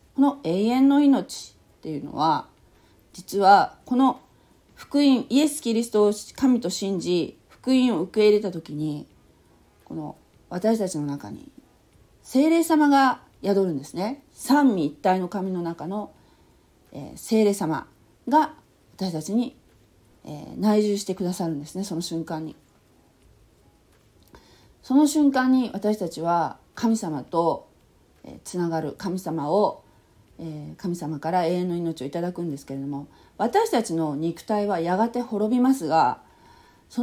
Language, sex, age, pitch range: Japanese, female, 40-59, 160-245 Hz